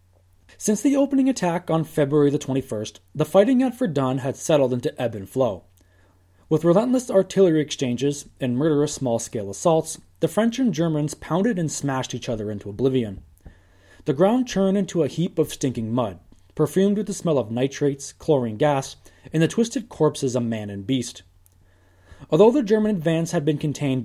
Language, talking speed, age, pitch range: English, 170 wpm, 20-39, 105-170 Hz